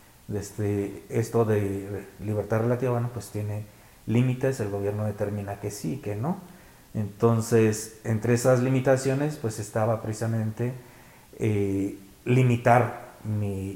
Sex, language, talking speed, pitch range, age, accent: male, Spanish, 120 wpm, 105-130 Hz, 40-59, Mexican